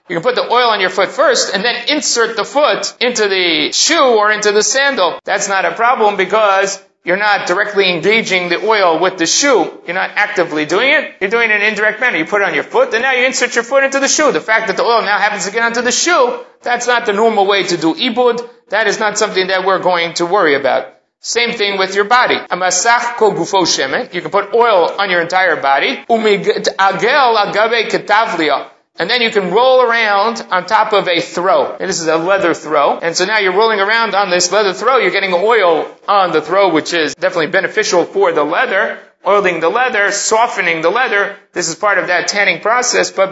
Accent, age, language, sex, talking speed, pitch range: American, 30-49, English, male, 225 wpm, 185-235 Hz